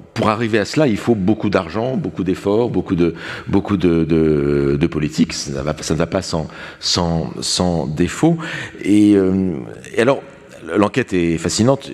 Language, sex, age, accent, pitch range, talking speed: French, male, 40-59, French, 80-110 Hz, 180 wpm